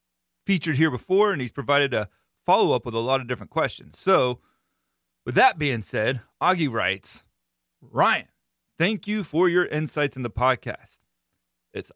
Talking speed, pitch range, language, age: 155 wpm, 110-145 Hz, English, 30-49